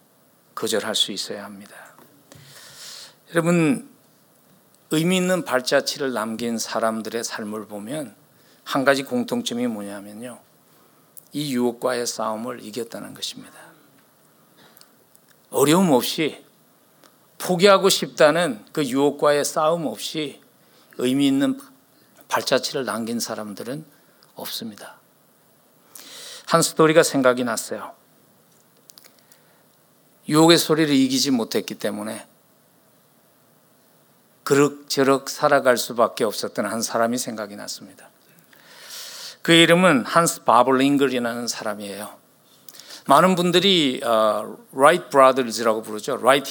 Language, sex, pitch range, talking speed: English, male, 115-165 Hz, 85 wpm